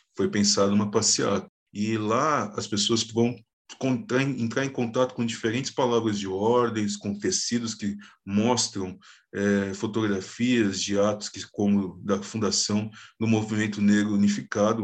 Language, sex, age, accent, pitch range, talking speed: Portuguese, male, 20-39, Brazilian, 100-115 Hz, 140 wpm